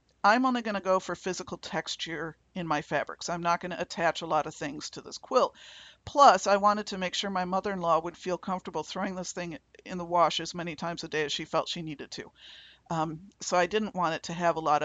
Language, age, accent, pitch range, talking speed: English, 50-69, American, 170-200 Hz, 245 wpm